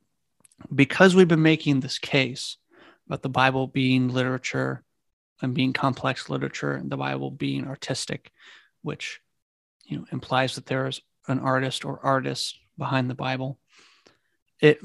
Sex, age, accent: male, 30-49, American